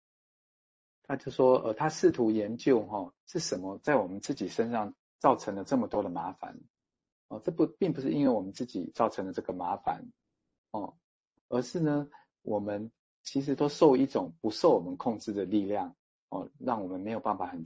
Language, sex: Chinese, male